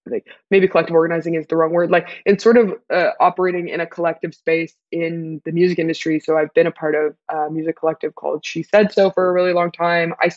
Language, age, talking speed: English, 20-39, 230 wpm